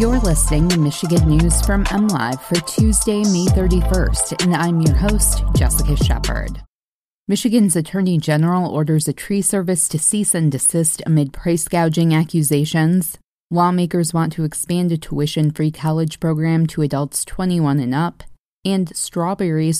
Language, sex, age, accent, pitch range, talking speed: English, female, 20-39, American, 150-175 Hz, 145 wpm